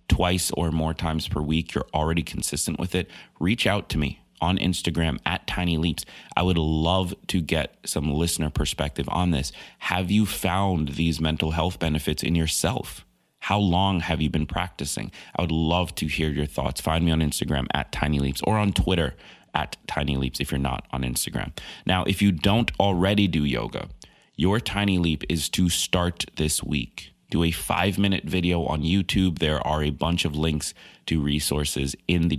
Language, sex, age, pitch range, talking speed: English, male, 30-49, 75-90 Hz, 190 wpm